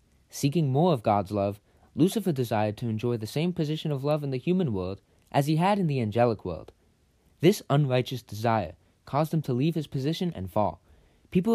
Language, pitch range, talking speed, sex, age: English, 105-150 Hz, 190 wpm, male, 20-39